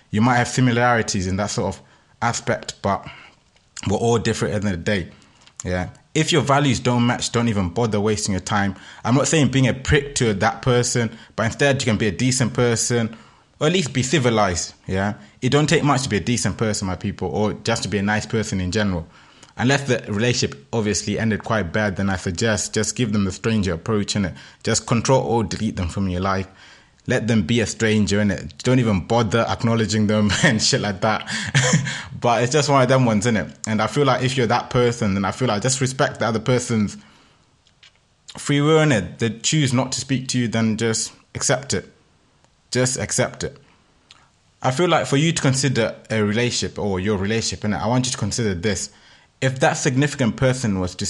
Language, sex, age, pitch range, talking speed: English, male, 20-39, 105-125 Hz, 215 wpm